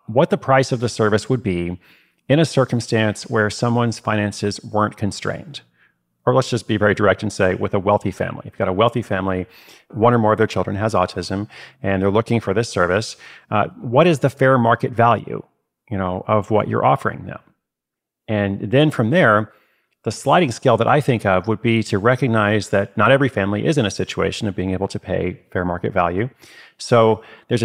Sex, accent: male, American